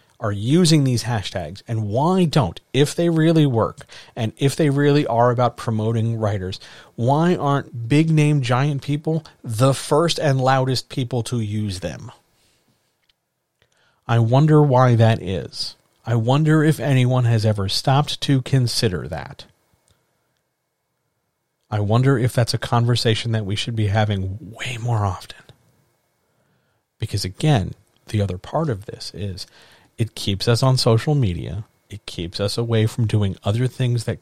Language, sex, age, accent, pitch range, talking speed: English, male, 40-59, American, 105-135 Hz, 150 wpm